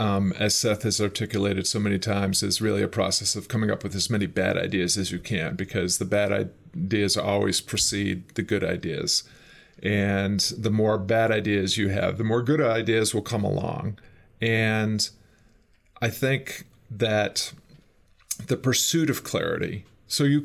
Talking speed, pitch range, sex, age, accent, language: 165 wpm, 105-120 Hz, male, 40-59, American, English